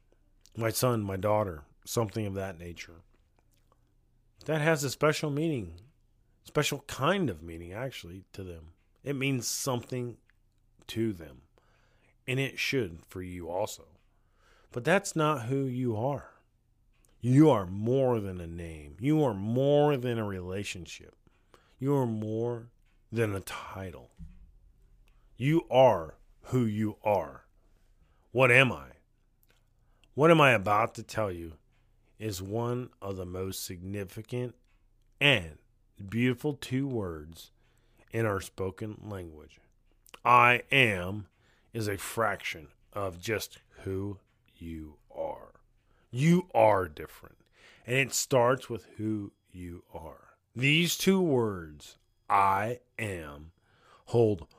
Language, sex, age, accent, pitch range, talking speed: English, male, 40-59, American, 95-125 Hz, 120 wpm